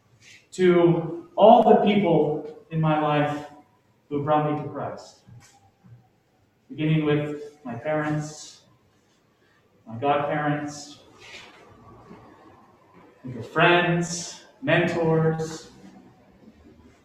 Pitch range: 135-170 Hz